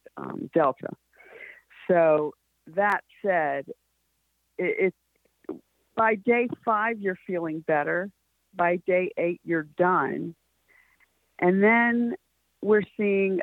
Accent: American